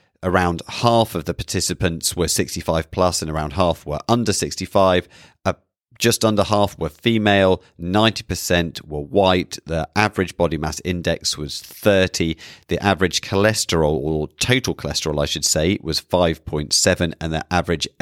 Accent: British